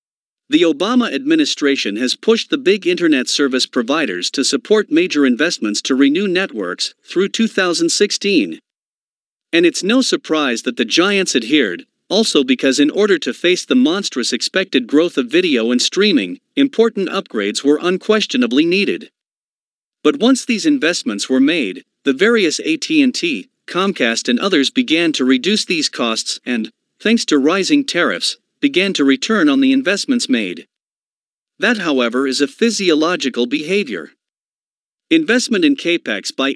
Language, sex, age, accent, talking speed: Italian, male, 50-69, American, 140 wpm